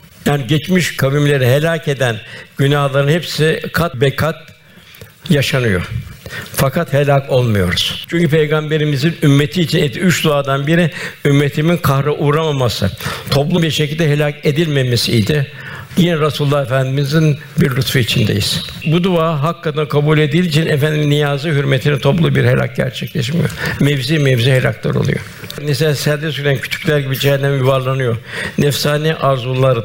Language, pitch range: Turkish, 135-155 Hz